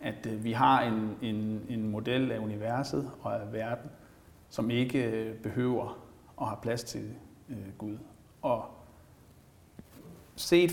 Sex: male